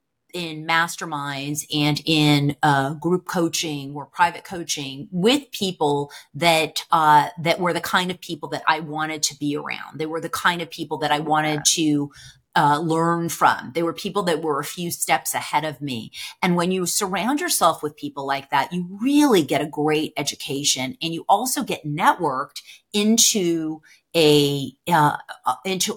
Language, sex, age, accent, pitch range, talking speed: English, female, 30-49, American, 150-175 Hz, 170 wpm